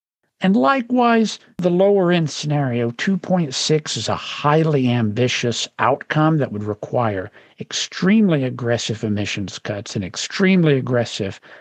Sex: male